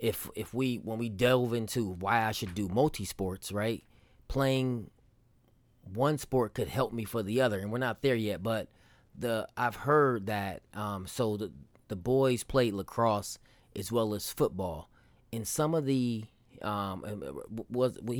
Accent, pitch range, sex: American, 105-125 Hz, male